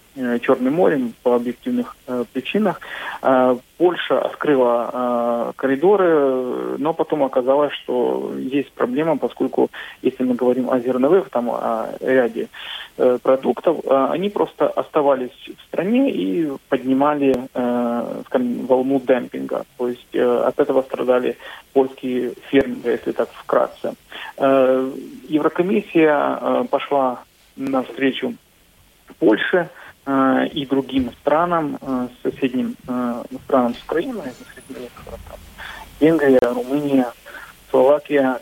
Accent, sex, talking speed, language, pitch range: native, male, 105 wpm, Russian, 125-155 Hz